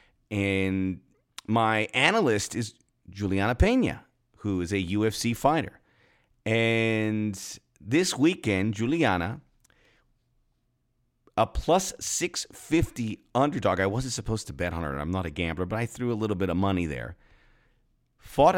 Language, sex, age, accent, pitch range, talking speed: English, male, 40-59, American, 100-130 Hz, 130 wpm